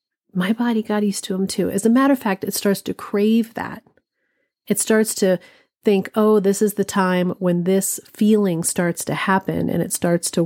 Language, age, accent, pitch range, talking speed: English, 40-59, American, 175-215 Hz, 205 wpm